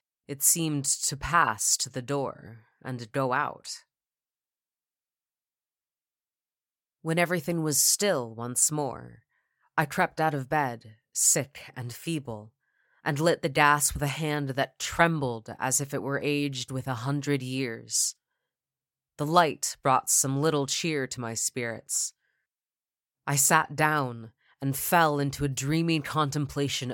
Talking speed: 135 wpm